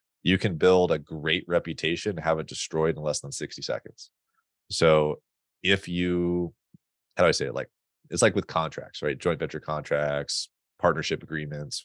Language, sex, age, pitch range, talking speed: English, male, 30-49, 75-90 Hz, 170 wpm